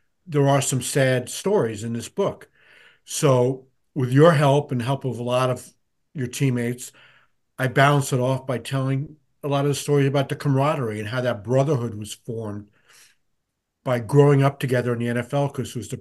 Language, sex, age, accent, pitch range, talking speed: English, male, 50-69, American, 115-135 Hz, 190 wpm